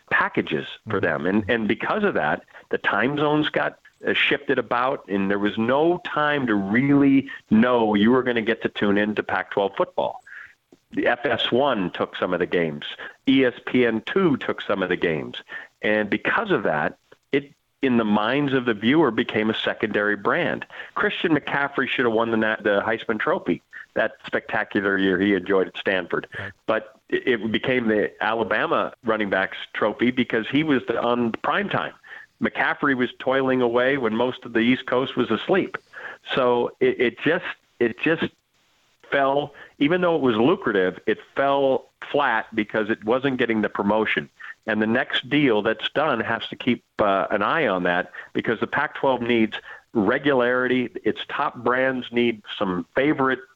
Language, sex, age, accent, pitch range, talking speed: English, male, 40-59, American, 110-135 Hz, 165 wpm